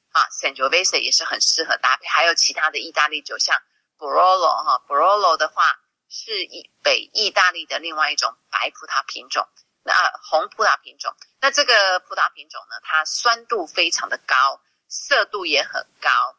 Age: 30-49